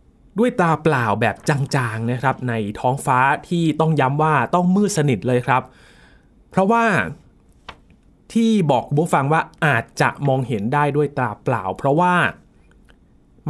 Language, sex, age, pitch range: Thai, male, 20-39, 120-170 Hz